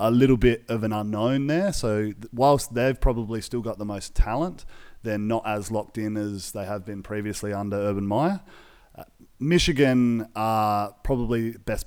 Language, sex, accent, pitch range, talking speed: English, male, Australian, 105-120 Hz, 170 wpm